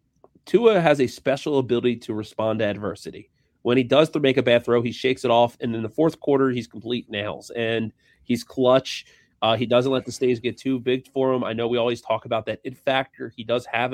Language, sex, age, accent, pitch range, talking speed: English, male, 30-49, American, 115-130 Hz, 235 wpm